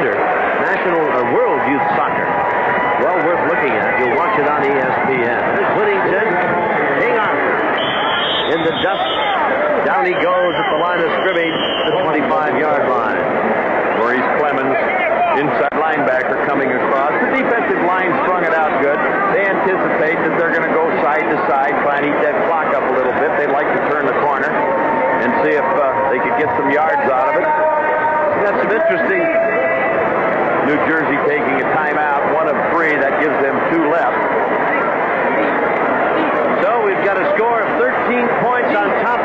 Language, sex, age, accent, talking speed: English, male, 60-79, American, 165 wpm